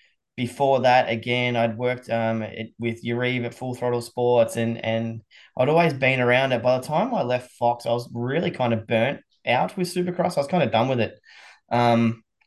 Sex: male